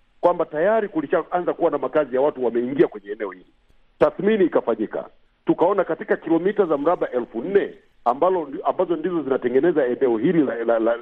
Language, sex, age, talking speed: Swahili, male, 50-69, 170 wpm